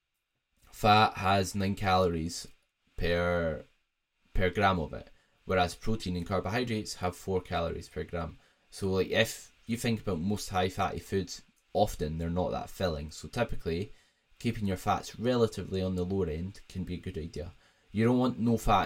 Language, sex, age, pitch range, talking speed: English, male, 10-29, 90-105 Hz, 170 wpm